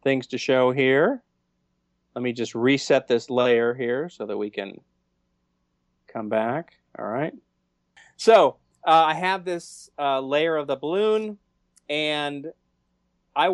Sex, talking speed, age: male, 135 wpm, 40-59